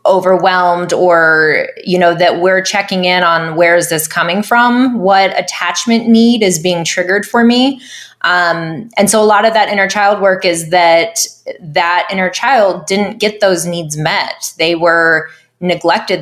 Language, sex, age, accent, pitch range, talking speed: English, female, 20-39, American, 170-210 Hz, 165 wpm